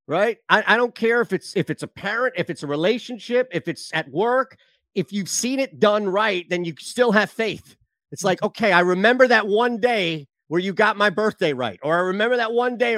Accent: American